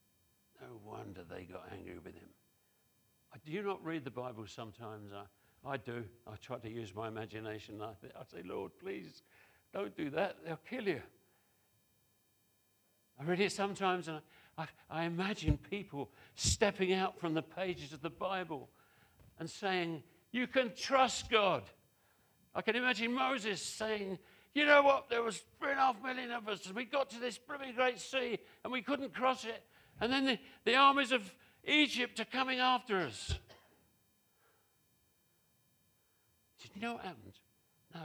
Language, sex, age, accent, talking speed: English, male, 60-79, British, 160 wpm